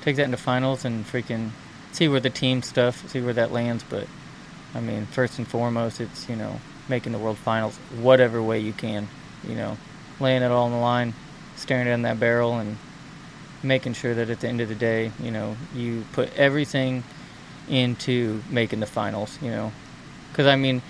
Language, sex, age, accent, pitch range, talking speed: English, male, 20-39, American, 115-130 Hz, 195 wpm